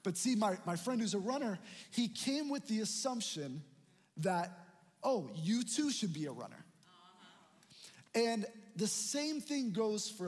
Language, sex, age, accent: English, male, 20-39, American